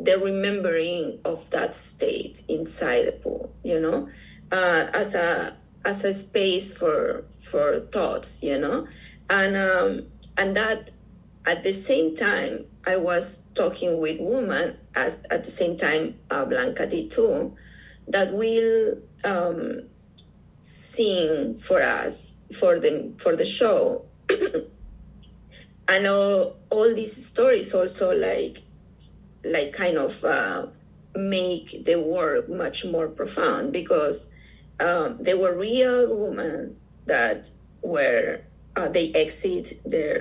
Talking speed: 120 wpm